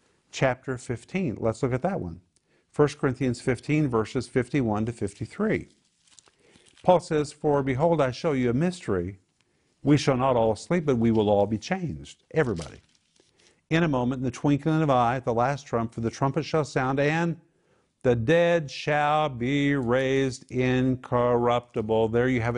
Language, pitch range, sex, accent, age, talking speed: English, 120-150 Hz, male, American, 50-69, 165 wpm